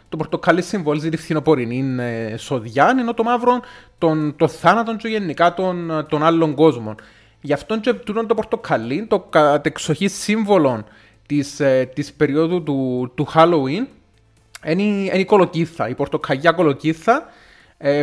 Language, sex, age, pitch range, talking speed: Greek, male, 20-39, 135-170 Hz, 140 wpm